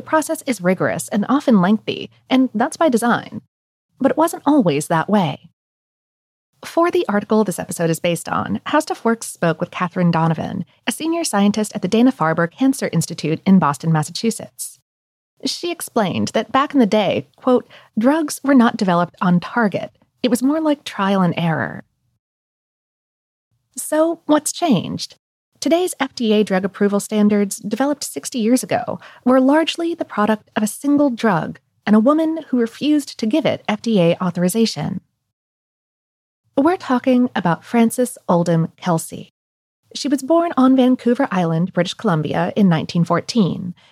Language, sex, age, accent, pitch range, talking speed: English, female, 30-49, American, 180-270 Hz, 150 wpm